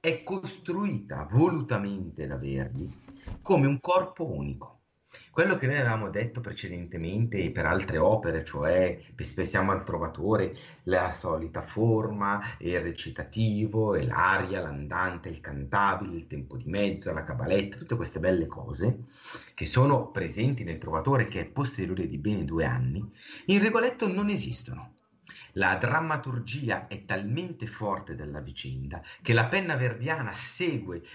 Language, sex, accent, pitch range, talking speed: Italian, male, native, 95-140 Hz, 135 wpm